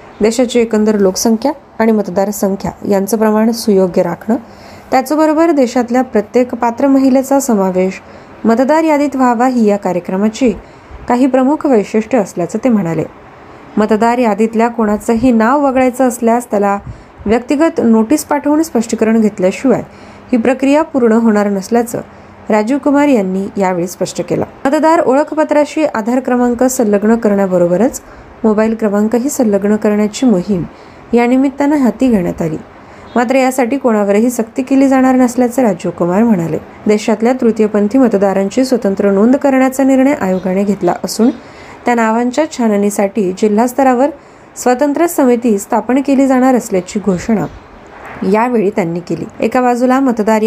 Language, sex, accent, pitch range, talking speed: Marathi, female, native, 205-260 Hz, 80 wpm